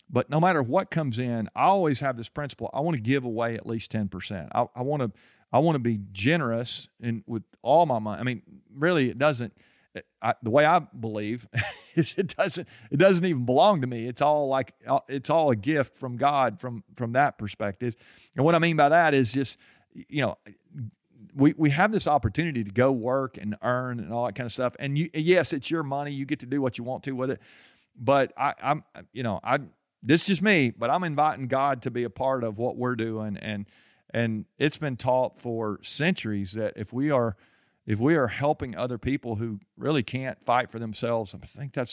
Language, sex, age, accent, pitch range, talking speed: English, male, 40-59, American, 115-140 Hz, 215 wpm